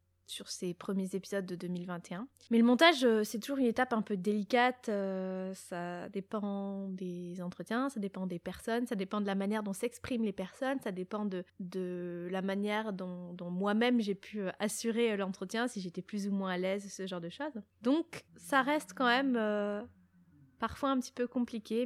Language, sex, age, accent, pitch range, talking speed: French, female, 20-39, French, 190-240 Hz, 185 wpm